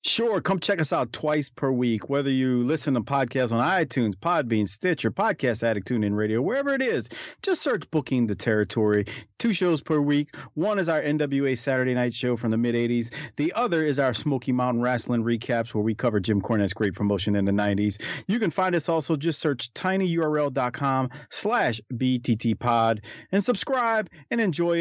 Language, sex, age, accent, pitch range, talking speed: English, male, 40-59, American, 115-165 Hz, 180 wpm